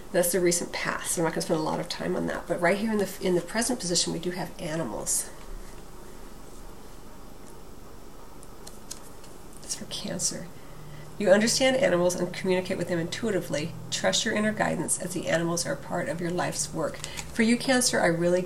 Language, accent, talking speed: English, American, 180 wpm